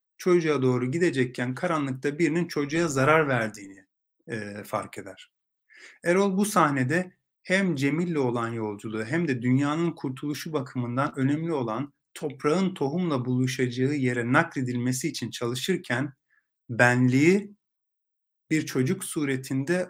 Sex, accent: male, native